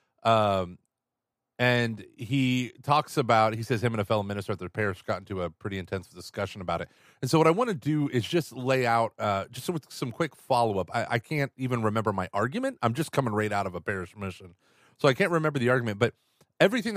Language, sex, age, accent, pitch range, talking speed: English, male, 30-49, American, 100-130 Hz, 225 wpm